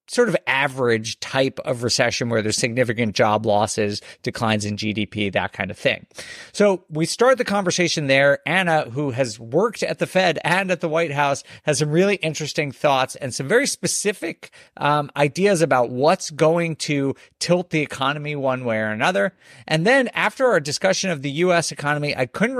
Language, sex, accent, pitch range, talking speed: English, male, American, 125-180 Hz, 185 wpm